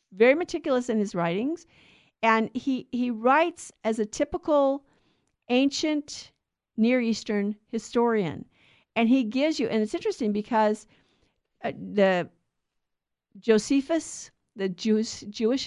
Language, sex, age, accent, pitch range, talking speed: English, female, 50-69, American, 210-275 Hz, 115 wpm